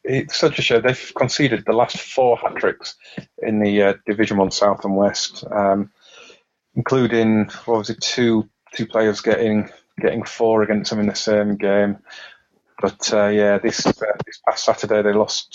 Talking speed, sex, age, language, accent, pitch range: 180 wpm, male, 30-49, English, British, 100-110 Hz